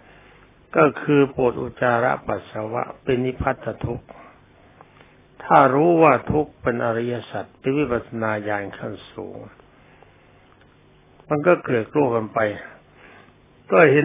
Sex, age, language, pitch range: male, 60-79, Thai, 110-140 Hz